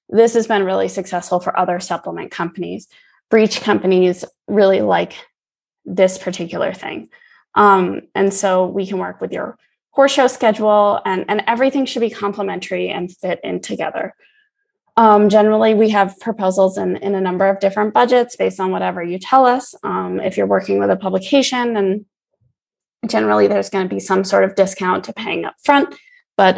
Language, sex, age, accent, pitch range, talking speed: English, female, 20-39, American, 185-225 Hz, 175 wpm